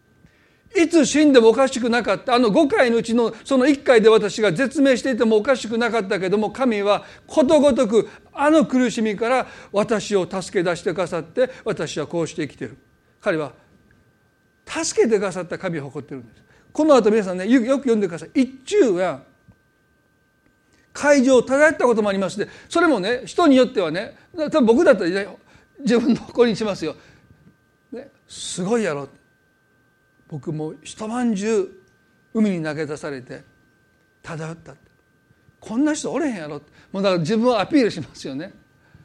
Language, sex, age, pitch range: Japanese, male, 40-59, 170-265 Hz